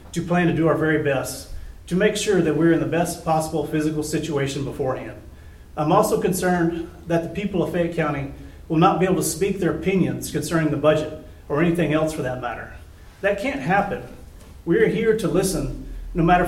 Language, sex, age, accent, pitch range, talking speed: English, male, 40-59, American, 145-180 Hz, 195 wpm